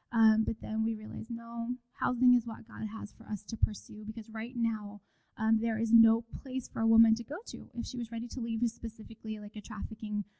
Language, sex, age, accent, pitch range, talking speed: English, female, 10-29, American, 215-240 Hz, 225 wpm